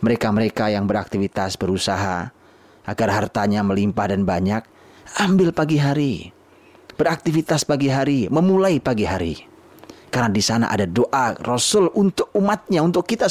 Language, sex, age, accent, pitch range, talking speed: Indonesian, male, 30-49, native, 100-125 Hz, 125 wpm